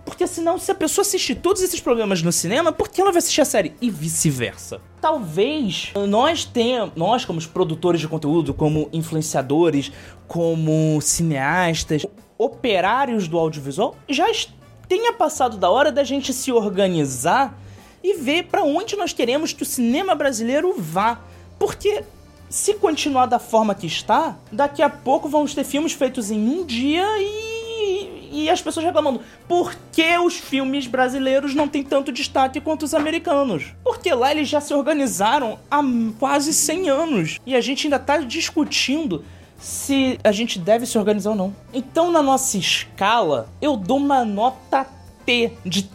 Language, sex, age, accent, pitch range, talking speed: Portuguese, male, 20-39, Brazilian, 180-305 Hz, 160 wpm